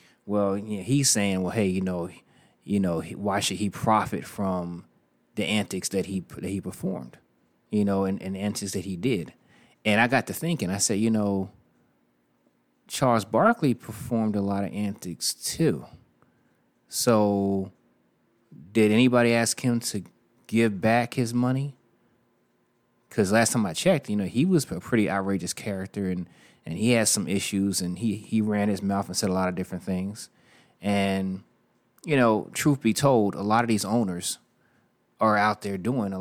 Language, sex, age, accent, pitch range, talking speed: English, male, 30-49, American, 95-115 Hz, 175 wpm